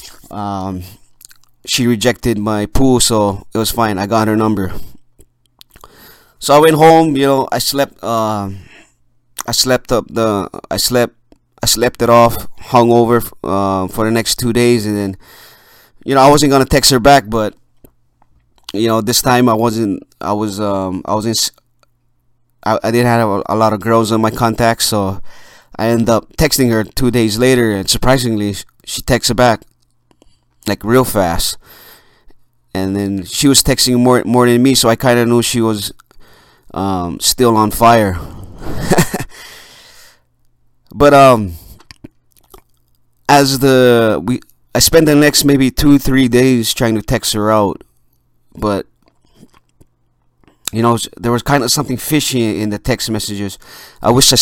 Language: English